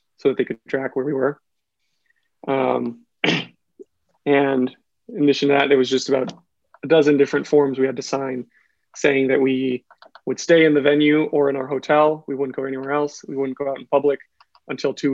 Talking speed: 200 wpm